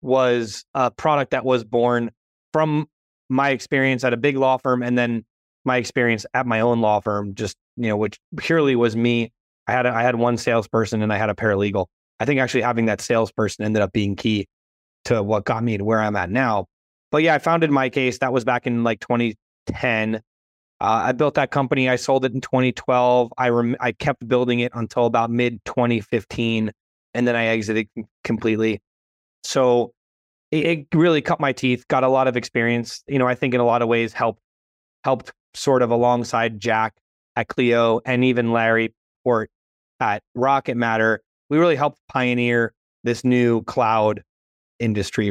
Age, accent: 30-49, American